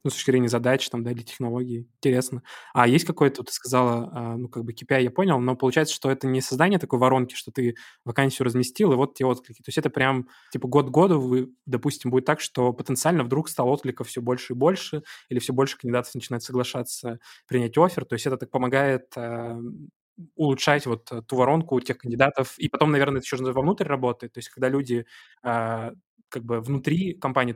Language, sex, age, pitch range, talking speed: Russian, male, 20-39, 120-135 Hz, 200 wpm